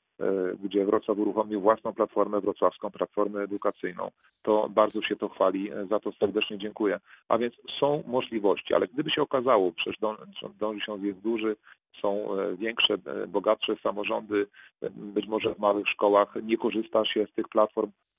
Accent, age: native, 40-59